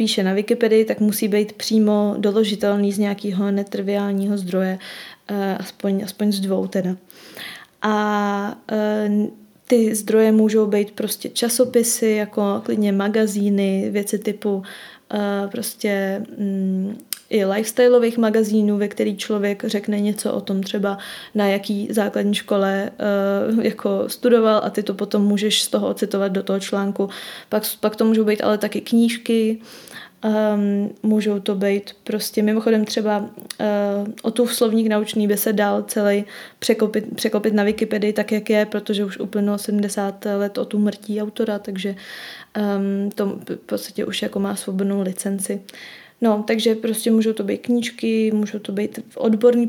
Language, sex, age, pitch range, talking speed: Czech, female, 20-39, 200-220 Hz, 145 wpm